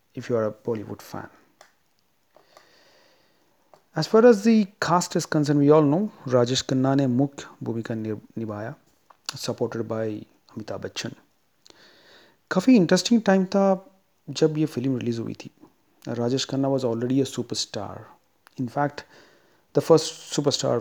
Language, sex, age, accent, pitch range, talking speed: Hindi, male, 40-59, native, 120-155 Hz, 135 wpm